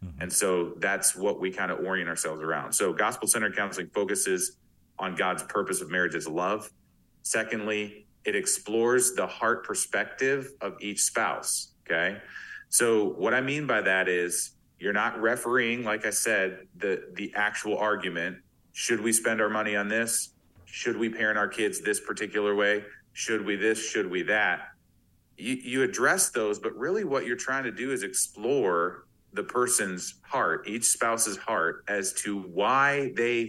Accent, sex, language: American, male, English